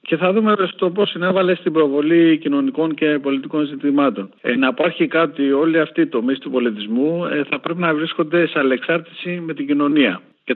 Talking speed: 190 wpm